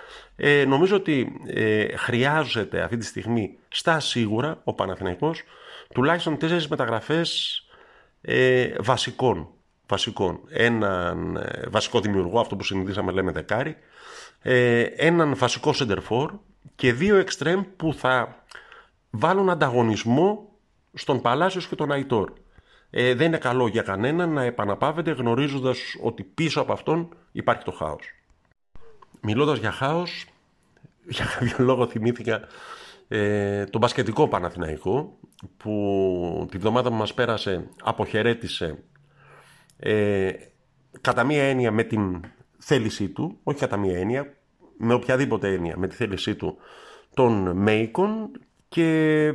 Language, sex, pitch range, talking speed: Greek, male, 110-155 Hz, 120 wpm